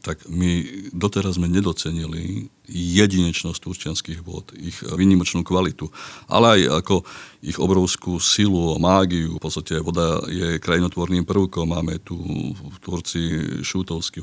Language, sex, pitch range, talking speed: Slovak, male, 85-95 Hz, 120 wpm